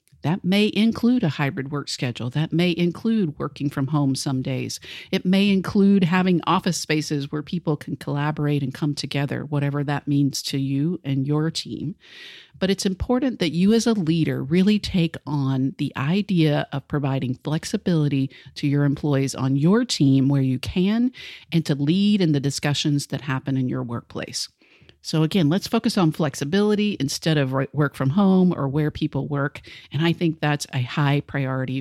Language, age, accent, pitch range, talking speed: English, 50-69, American, 140-180 Hz, 175 wpm